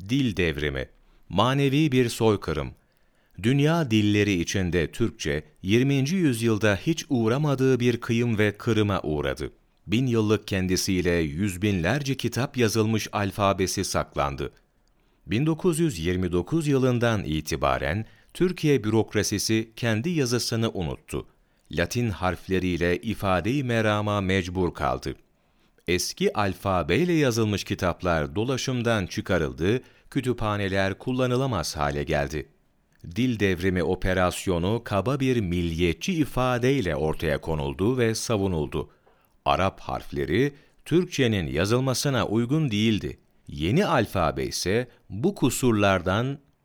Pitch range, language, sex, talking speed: 90-125 Hz, Turkish, male, 95 wpm